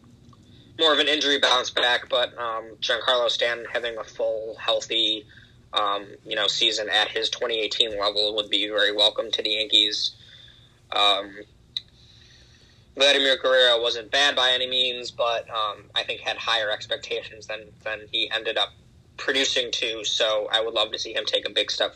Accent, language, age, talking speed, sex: American, English, 10-29, 170 wpm, male